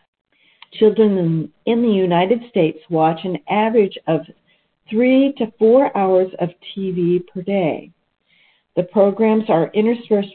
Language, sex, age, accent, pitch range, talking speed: English, female, 50-69, American, 175-220 Hz, 120 wpm